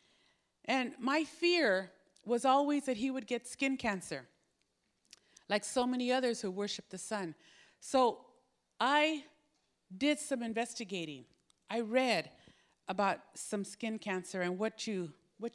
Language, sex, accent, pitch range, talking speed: English, female, American, 230-300 Hz, 125 wpm